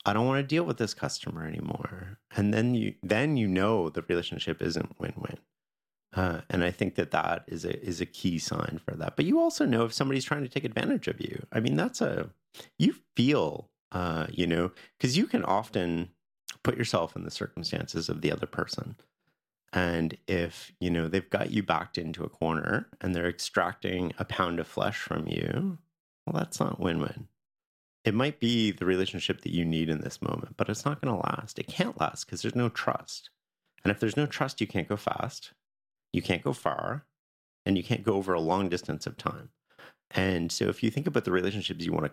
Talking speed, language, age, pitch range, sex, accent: 215 wpm, French, 30-49, 90-130 Hz, male, American